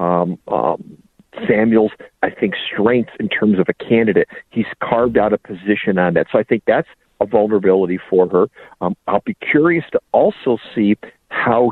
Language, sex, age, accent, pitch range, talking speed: English, male, 50-69, American, 100-130 Hz, 175 wpm